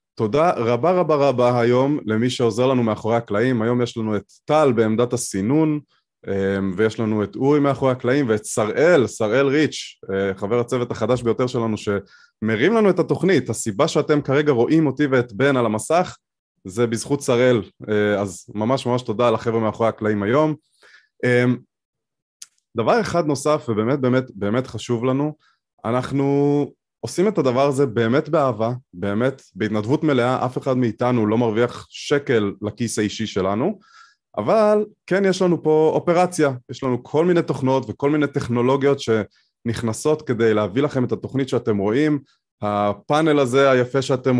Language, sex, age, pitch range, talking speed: Hebrew, male, 20-39, 110-145 Hz, 145 wpm